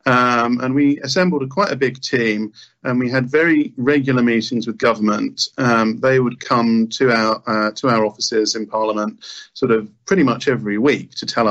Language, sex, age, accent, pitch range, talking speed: English, male, 40-59, British, 115-135 Hz, 195 wpm